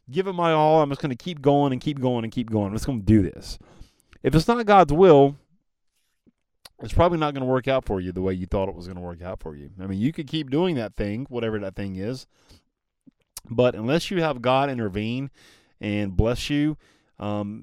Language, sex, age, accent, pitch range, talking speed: English, male, 30-49, American, 105-140 Hz, 240 wpm